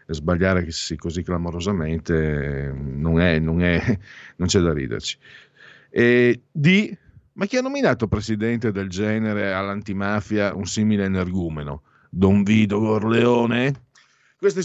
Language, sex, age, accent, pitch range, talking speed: Italian, male, 50-69, native, 100-135 Hz, 100 wpm